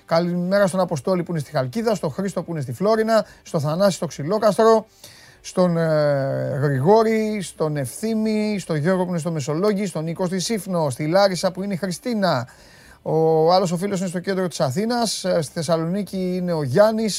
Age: 30-49